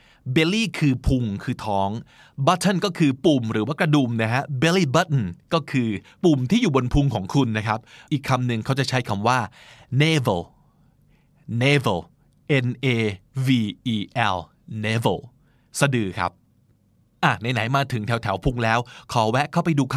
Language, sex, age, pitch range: Thai, male, 20-39, 115-145 Hz